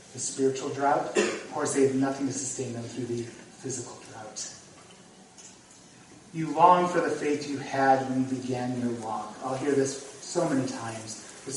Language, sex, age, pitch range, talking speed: English, male, 30-49, 130-160 Hz, 175 wpm